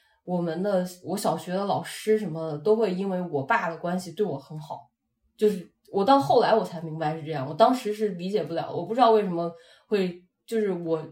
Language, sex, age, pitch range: Chinese, female, 20-39, 170-220 Hz